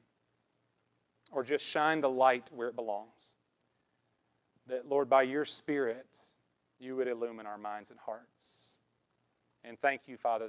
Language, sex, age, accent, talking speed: English, male, 40-59, American, 135 wpm